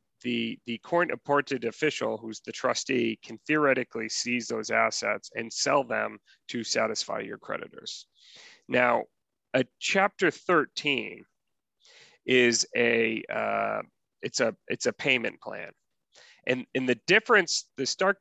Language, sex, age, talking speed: English, male, 30-49, 125 wpm